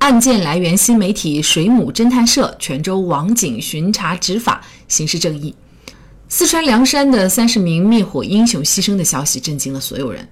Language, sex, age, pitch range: Chinese, female, 30-49, 150-220 Hz